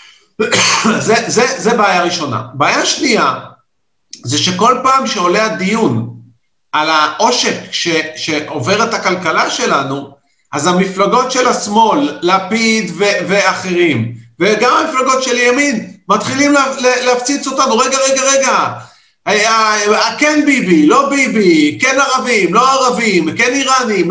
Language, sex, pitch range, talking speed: Hebrew, male, 180-260 Hz, 130 wpm